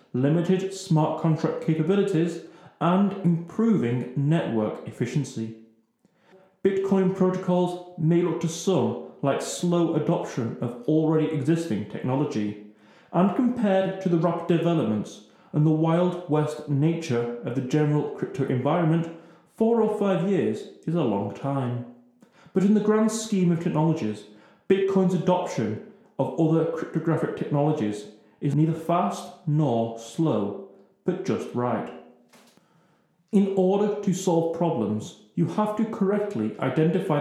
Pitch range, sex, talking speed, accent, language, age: 130-185 Hz, male, 125 wpm, British, English, 30-49